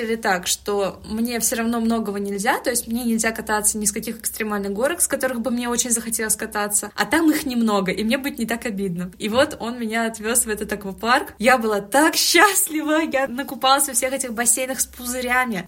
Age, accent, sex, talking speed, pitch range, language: 20-39, native, female, 205 wpm, 210-260 Hz, Russian